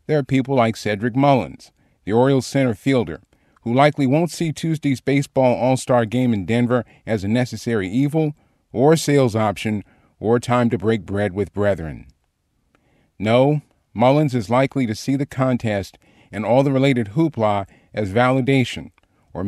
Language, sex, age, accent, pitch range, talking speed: English, male, 40-59, American, 105-135 Hz, 155 wpm